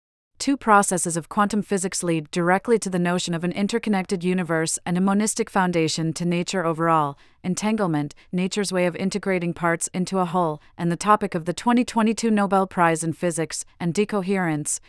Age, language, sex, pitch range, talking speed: 30-49, English, female, 165-200 Hz, 170 wpm